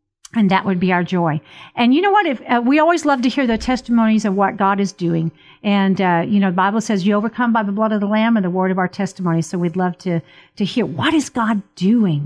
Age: 50-69